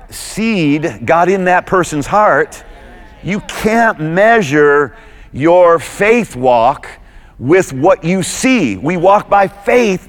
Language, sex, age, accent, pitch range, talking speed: English, male, 40-59, American, 130-190 Hz, 120 wpm